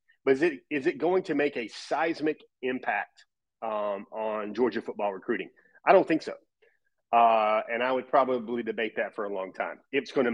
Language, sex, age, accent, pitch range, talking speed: English, male, 30-49, American, 115-145 Hz, 195 wpm